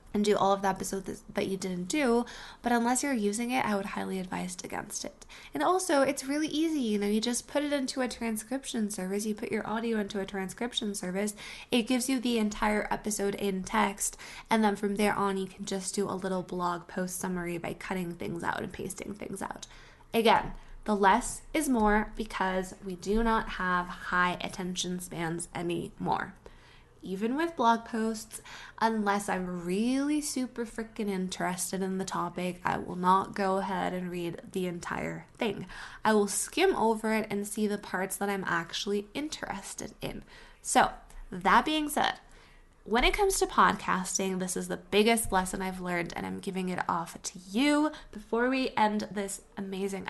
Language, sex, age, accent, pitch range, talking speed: English, female, 20-39, American, 185-230 Hz, 185 wpm